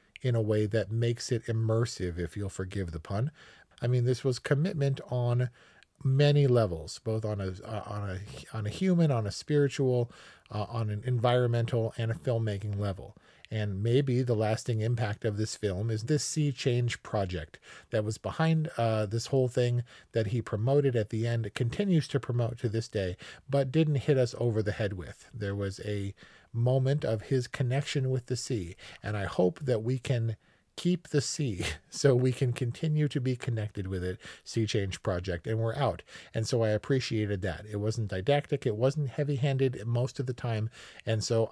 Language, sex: English, male